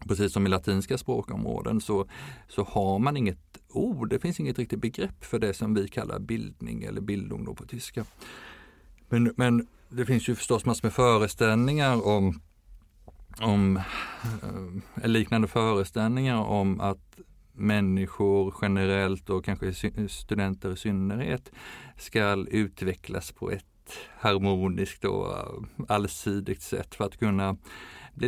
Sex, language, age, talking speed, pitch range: male, Swedish, 50-69, 130 wpm, 95-115 Hz